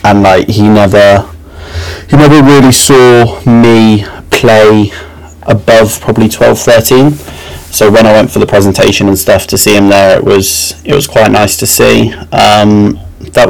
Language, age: English, 20-39